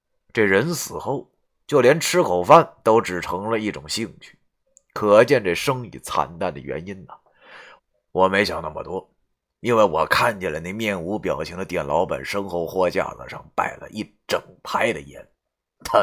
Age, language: 30-49, Chinese